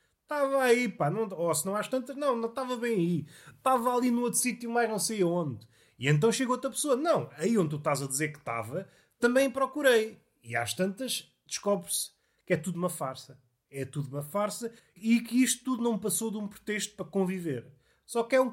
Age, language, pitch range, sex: 30-49, Portuguese, 155-235 Hz, male